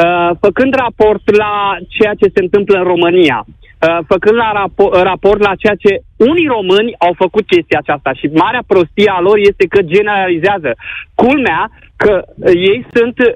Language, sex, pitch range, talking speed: Romanian, male, 180-230 Hz, 160 wpm